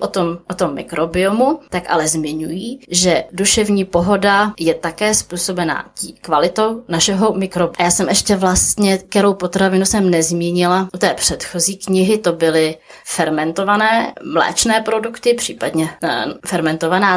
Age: 20-39